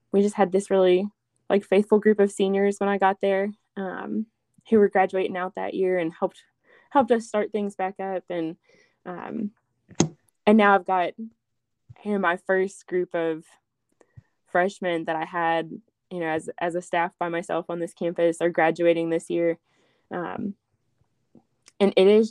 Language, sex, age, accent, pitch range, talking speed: English, female, 20-39, American, 170-210 Hz, 175 wpm